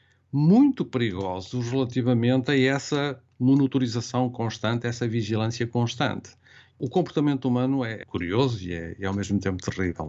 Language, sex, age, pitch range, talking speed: Portuguese, male, 50-69, 100-130 Hz, 130 wpm